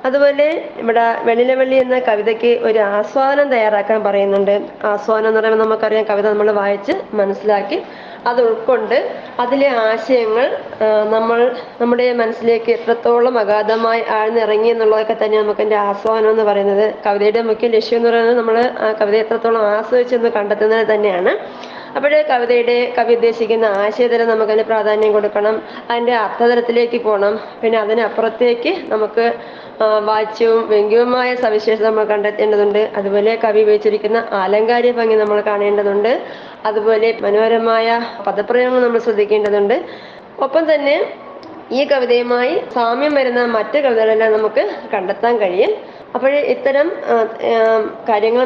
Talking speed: 115 wpm